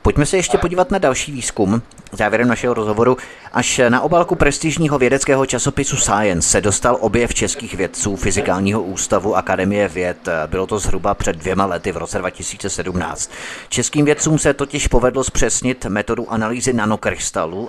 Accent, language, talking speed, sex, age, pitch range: native, Czech, 150 wpm, male, 30-49, 95-125 Hz